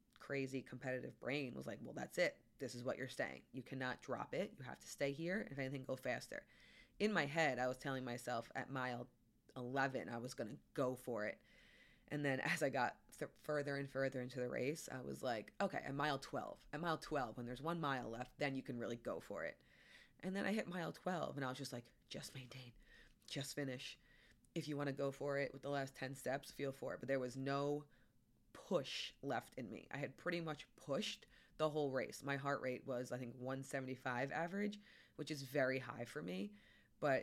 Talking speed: 220 wpm